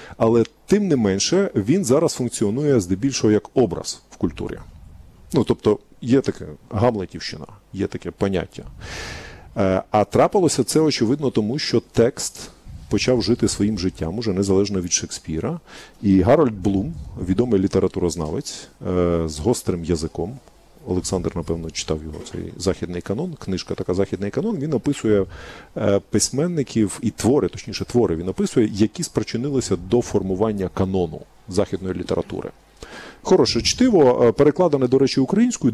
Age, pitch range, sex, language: 40-59, 95-140 Hz, male, Ukrainian